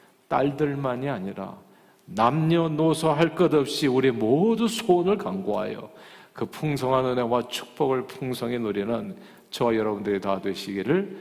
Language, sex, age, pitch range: Korean, male, 40-59, 115-160 Hz